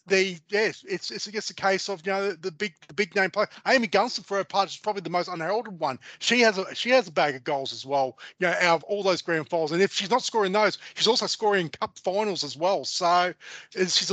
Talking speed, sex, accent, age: 265 wpm, male, Australian, 30-49